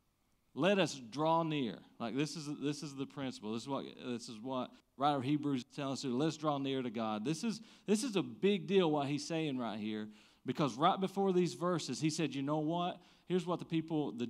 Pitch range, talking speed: 125-165 Hz, 235 wpm